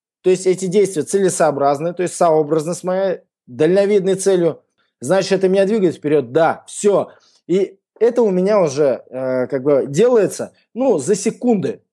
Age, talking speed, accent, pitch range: 20-39, 155 wpm, native, 150-195 Hz